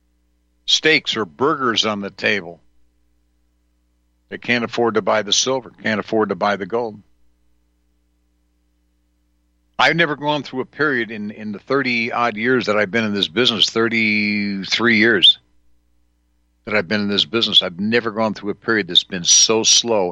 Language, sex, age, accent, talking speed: English, male, 60-79, American, 160 wpm